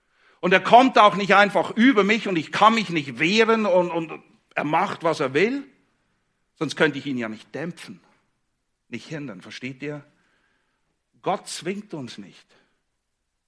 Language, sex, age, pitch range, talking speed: English, male, 60-79, 120-195 Hz, 160 wpm